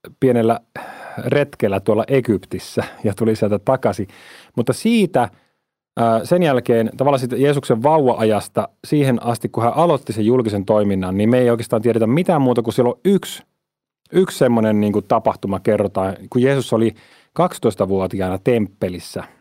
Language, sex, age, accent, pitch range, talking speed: Finnish, male, 30-49, native, 100-125 Hz, 140 wpm